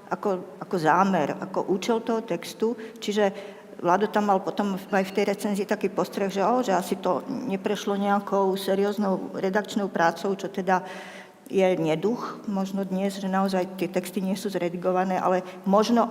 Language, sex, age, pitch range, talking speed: Slovak, female, 50-69, 190-220 Hz, 160 wpm